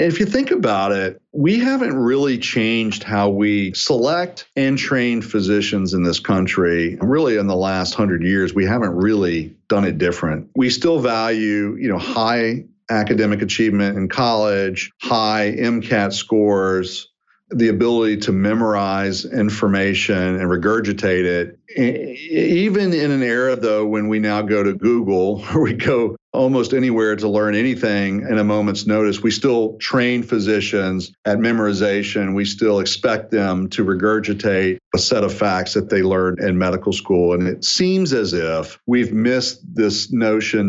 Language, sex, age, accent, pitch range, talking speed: English, male, 40-59, American, 100-120 Hz, 155 wpm